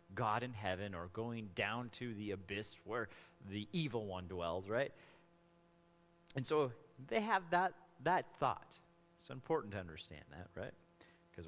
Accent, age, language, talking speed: American, 30-49, English, 150 wpm